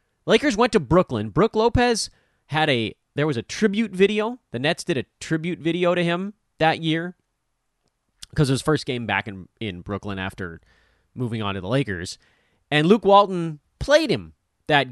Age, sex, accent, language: 30-49, male, American, English